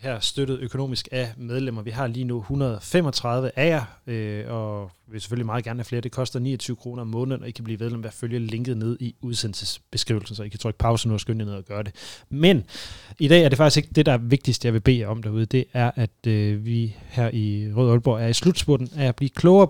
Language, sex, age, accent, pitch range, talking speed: Danish, male, 30-49, native, 115-140 Hz, 260 wpm